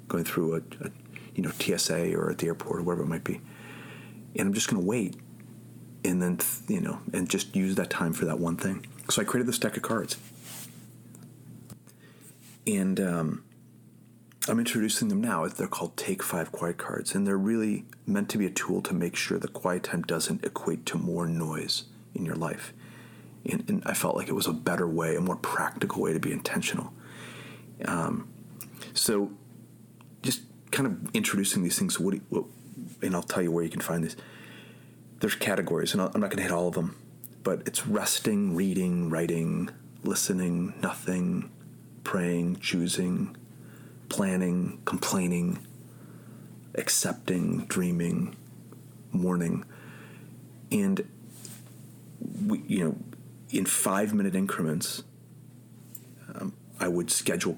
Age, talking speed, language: 40-59, 150 wpm, English